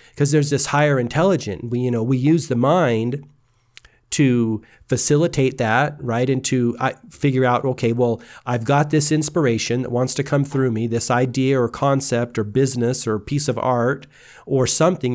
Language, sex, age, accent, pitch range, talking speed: English, male, 40-59, American, 120-145 Hz, 175 wpm